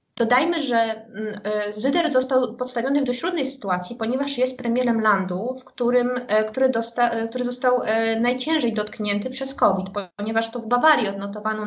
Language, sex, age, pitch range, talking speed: Polish, female, 20-39, 215-255 Hz, 140 wpm